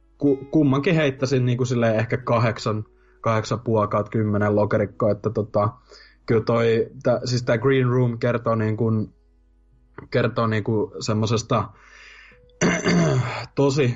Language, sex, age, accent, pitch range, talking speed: Finnish, male, 20-39, native, 110-125 Hz, 115 wpm